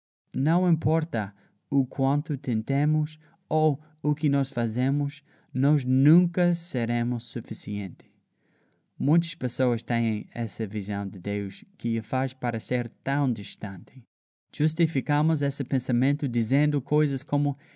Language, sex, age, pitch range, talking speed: Portuguese, male, 20-39, 115-150 Hz, 110 wpm